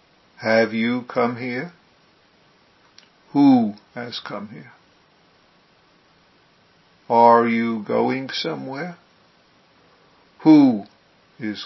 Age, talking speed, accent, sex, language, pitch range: 60-79, 70 wpm, American, male, English, 110-125 Hz